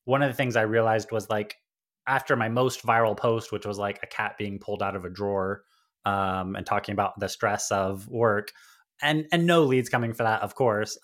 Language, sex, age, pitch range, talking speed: English, male, 20-39, 105-125 Hz, 225 wpm